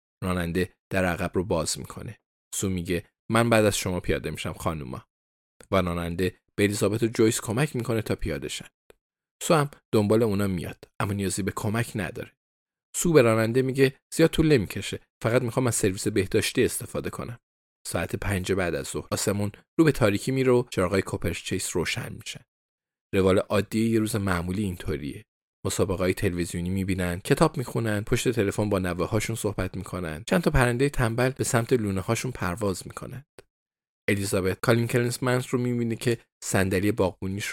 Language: Persian